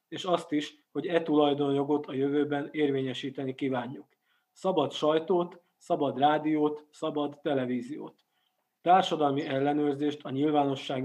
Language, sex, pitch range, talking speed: Hungarian, male, 135-150 Hz, 110 wpm